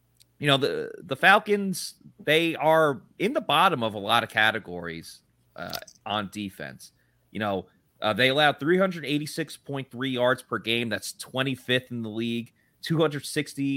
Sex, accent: male, American